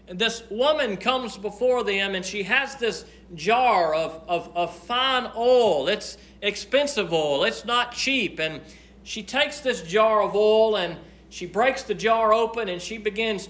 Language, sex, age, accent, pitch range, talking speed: English, male, 40-59, American, 180-245 Hz, 165 wpm